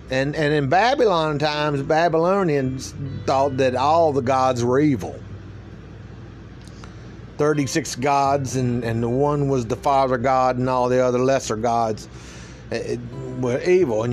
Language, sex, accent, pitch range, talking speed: English, male, American, 120-145 Hz, 140 wpm